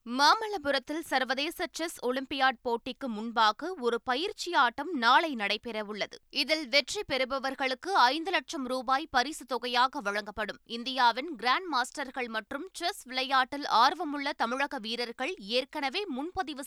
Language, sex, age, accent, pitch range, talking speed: Tamil, female, 20-39, native, 225-300 Hz, 110 wpm